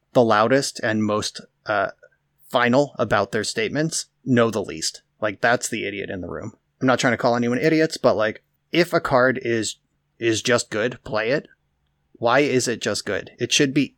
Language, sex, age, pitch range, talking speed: English, male, 30-49, 110-130 Hz, 195 wpm